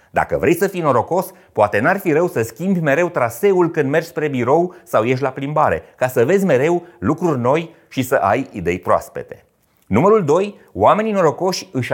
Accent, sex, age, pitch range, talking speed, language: native, male, 30-49, 130-185 Hz, 185 wpm, Romanian